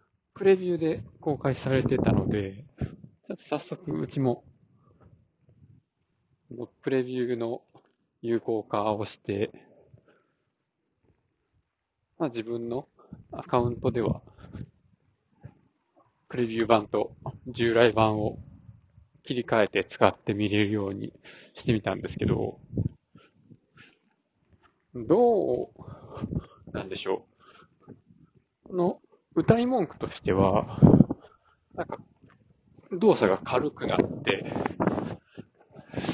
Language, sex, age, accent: Japanese, male, 20-39, native